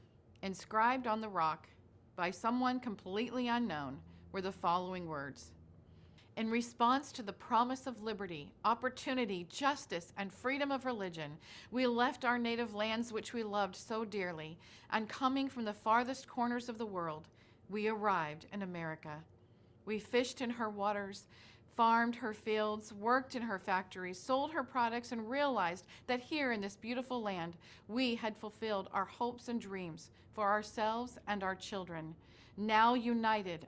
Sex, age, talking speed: female, 40-59, 150 wpm